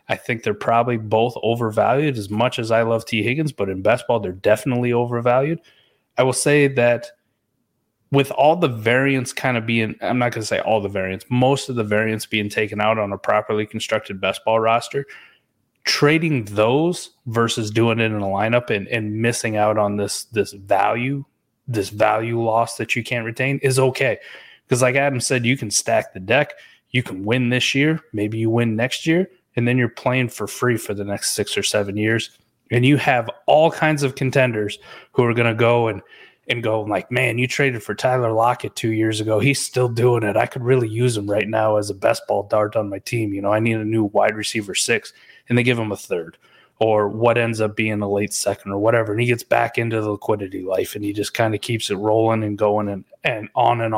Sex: male